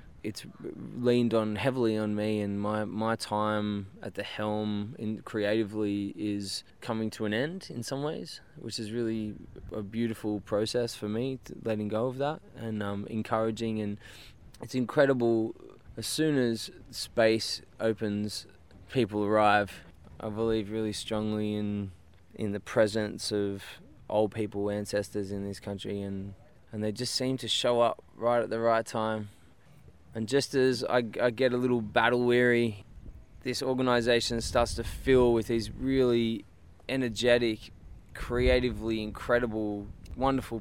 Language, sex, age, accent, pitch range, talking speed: English, male, 20-39, Australian, 105-115 Hz, 145 wpm